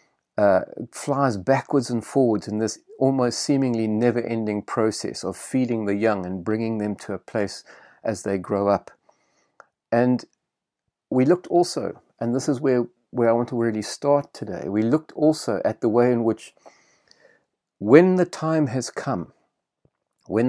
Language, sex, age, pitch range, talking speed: English, male, 40-59, 110-135 Hz, 160 wpm